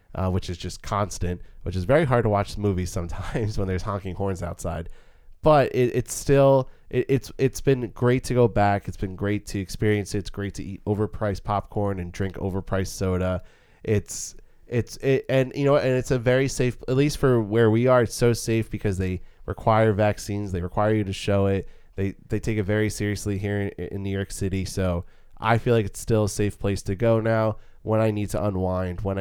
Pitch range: 95-115 Hz